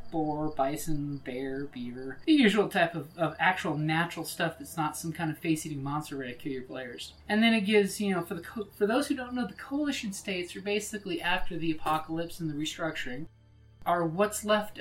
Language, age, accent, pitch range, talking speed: English, 30-49, American, 155-205 Hz, 205 wpm